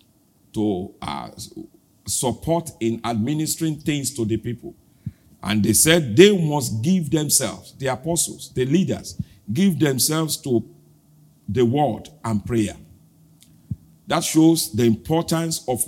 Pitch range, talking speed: 110-160 Hz, 120 wpm